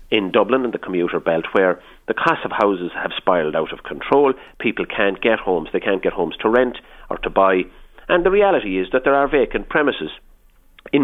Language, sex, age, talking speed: English, male, 40-59, 210 wpm